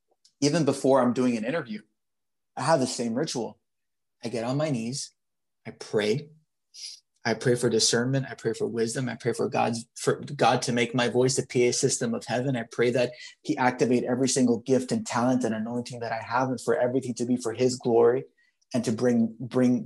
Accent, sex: American, male